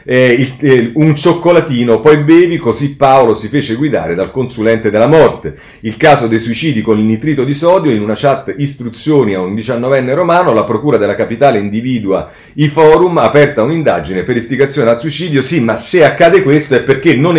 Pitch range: 105-150 Hz